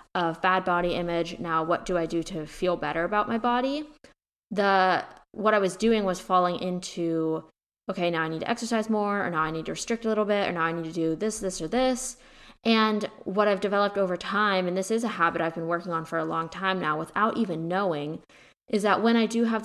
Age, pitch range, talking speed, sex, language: 20-39, 170-220 Hz, 240 wpm, female, English